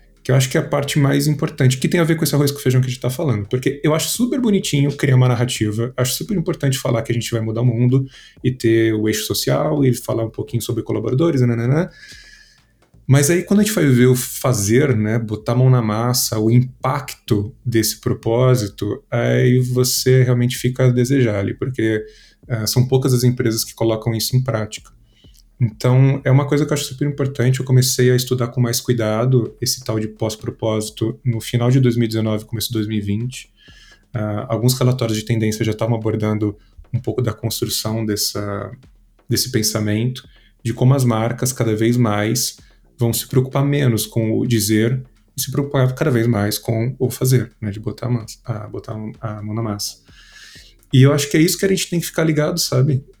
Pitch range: 110-130 Hz